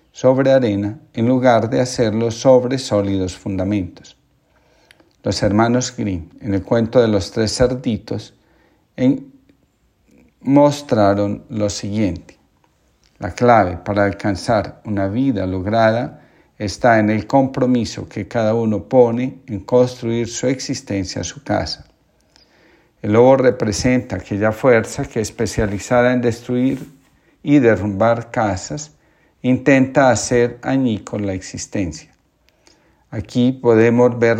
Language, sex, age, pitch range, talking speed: Spanish, male, 50-69, 105-125 Hz, 110 wpm